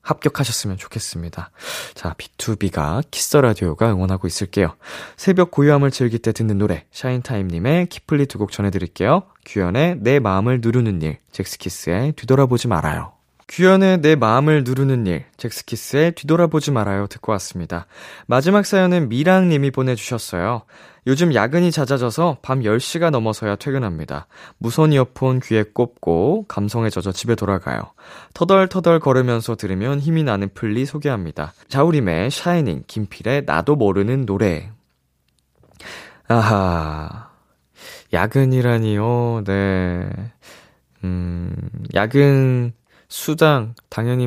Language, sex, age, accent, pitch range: Korean, male, 20-39, native, 100-140 Hz